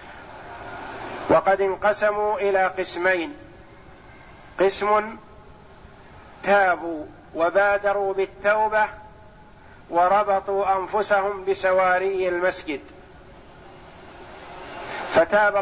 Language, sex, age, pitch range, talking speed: Arabic, male, 50-69, 175-200 Hz, 50 wpm